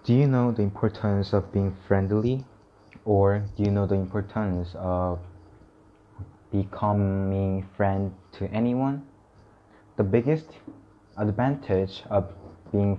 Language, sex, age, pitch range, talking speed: English, male, 20-39, 95-110 Hz, 110 wpm